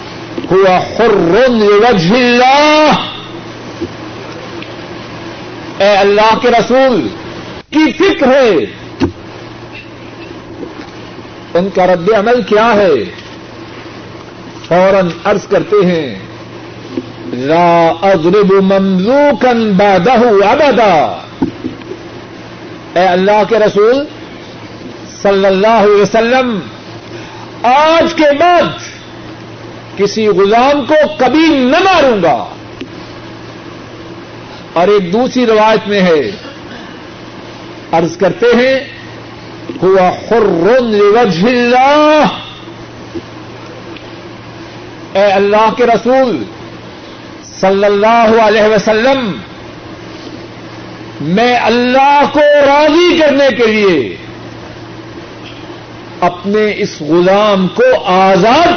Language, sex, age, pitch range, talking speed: Urdu, male, 50-69, 195-260 Hz, 75 wpm